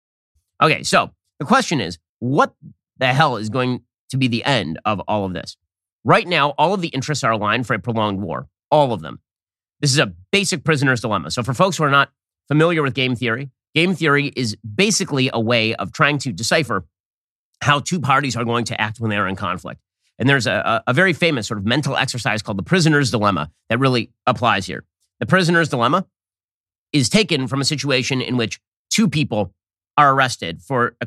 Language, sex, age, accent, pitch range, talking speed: English, male, 30-49, American, 100-155 Hz, 205 wpm